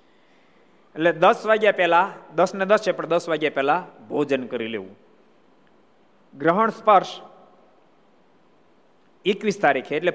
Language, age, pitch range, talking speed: Gujarati, 50-69, 160-210 Hz, 120 wpm